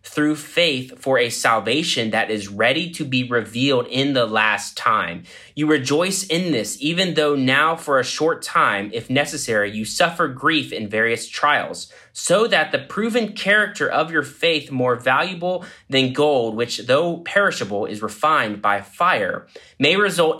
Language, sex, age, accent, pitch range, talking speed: English, male, 20-39, American, 100-145 Hz, 160 wpm